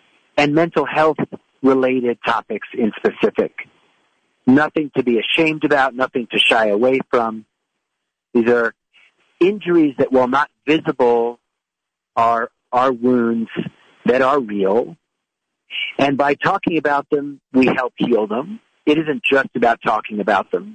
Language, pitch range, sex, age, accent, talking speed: English, 115-155 Hz, male, 50-69, American, 130 wpm